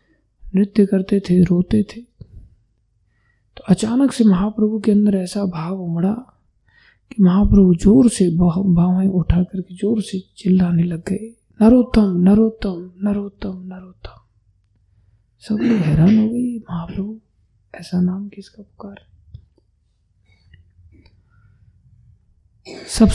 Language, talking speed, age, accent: Hindi, 105 wpm, 20-39, native